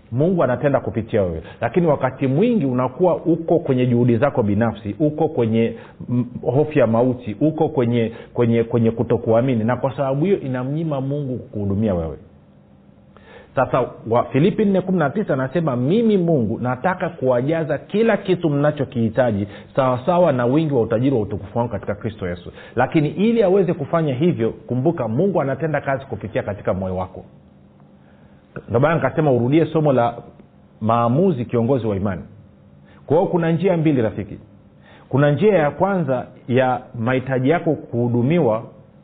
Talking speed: 135 wpm